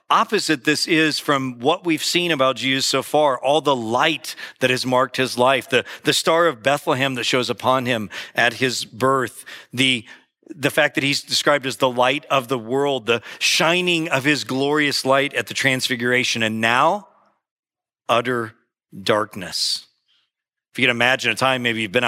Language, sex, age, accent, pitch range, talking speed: English, male, 40-59, American, 125-160 Hz, 175 wpm